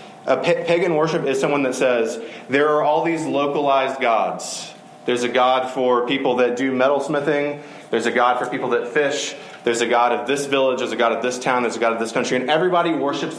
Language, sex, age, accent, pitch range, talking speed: English, male, 30-49, American, 120-150 Hz, 220 wpm